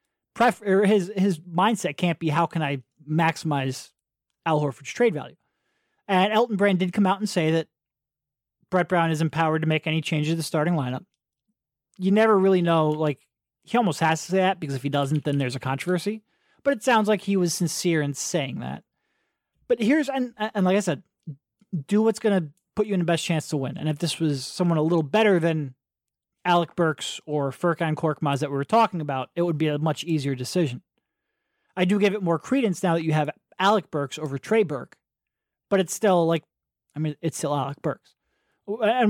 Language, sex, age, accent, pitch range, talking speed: English, male, 30-49, American, 150-195 Hz, 210 wpm